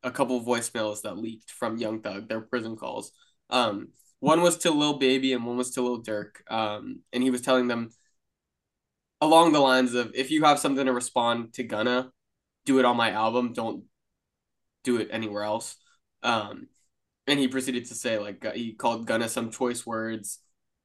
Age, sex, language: 20-39, male, English